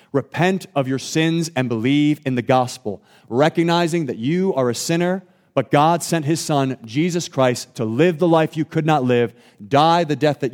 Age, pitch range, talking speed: 30-49, 120-155 Hz, 195 wpm